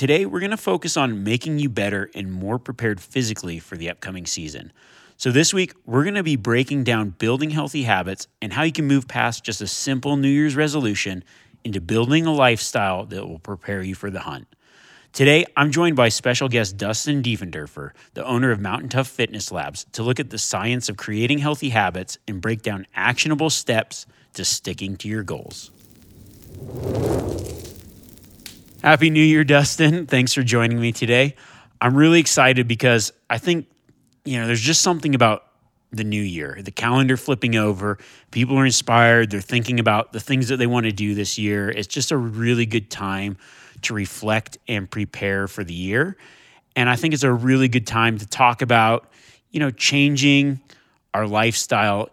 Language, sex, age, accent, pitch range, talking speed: English, male, 30-49, American, 105-135 Hz, 180 wpm